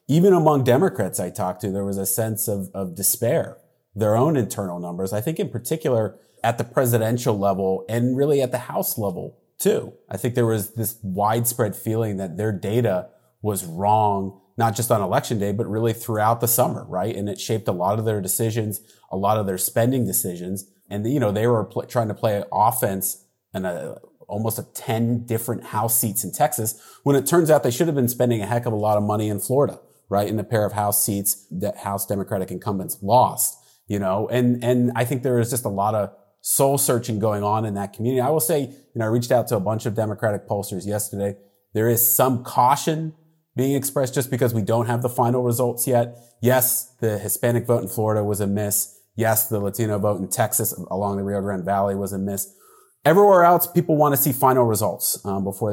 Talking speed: 215 wpm